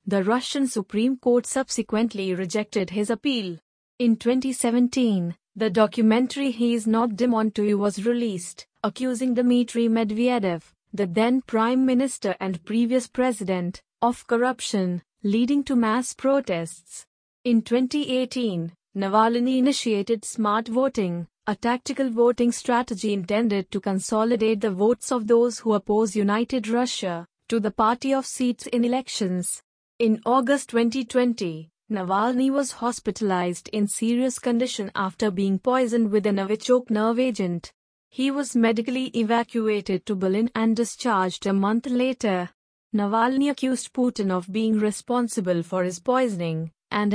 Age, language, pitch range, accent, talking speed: 30-49, English, 205-250 Hz, Indian, 130 wpm